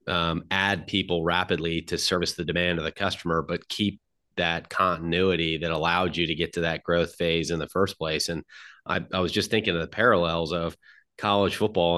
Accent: American